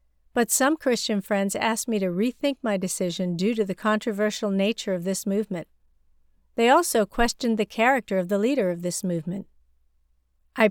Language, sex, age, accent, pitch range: Chinese, female, 50-69, American, 180-230 Hz